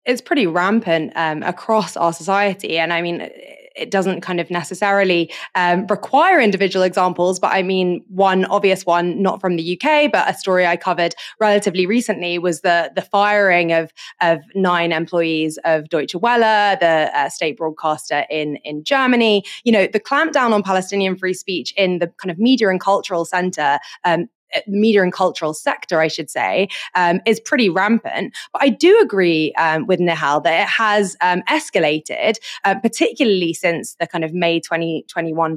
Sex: female